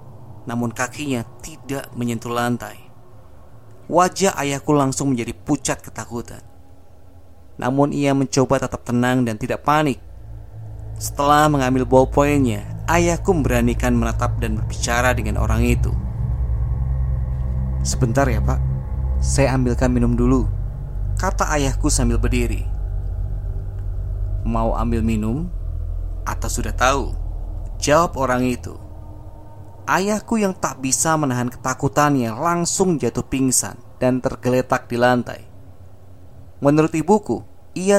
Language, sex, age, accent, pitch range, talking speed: Indonesian, male, 20-39, native, 105-130 Hz, 105 wpm